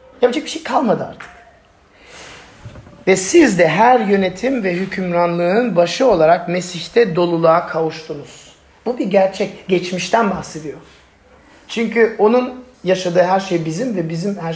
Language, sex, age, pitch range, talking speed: Turkish, male, 40-59, 180-230 Hz, 130 wpm